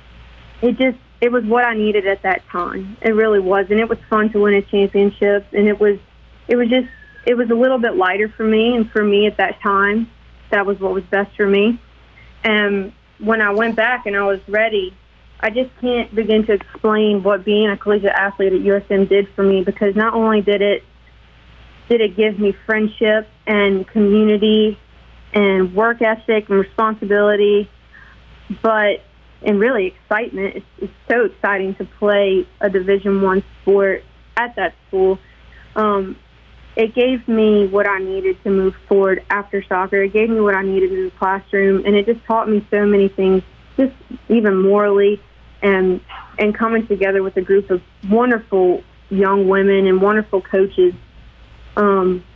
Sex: female